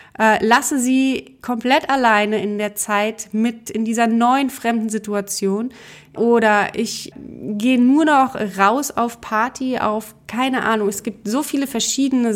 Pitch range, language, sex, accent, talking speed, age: 200-245 Hz, German, female, German, 140 wpm, 30-49